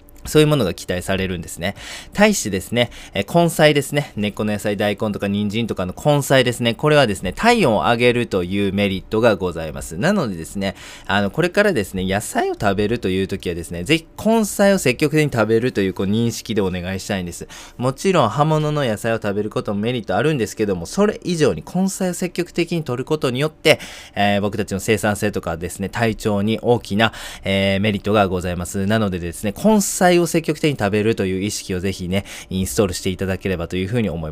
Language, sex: Japanese, male